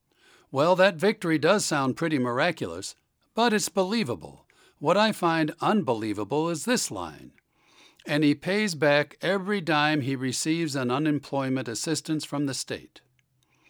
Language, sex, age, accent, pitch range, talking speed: English, male, 60-79, American, 130-170 Hz, 135 wpm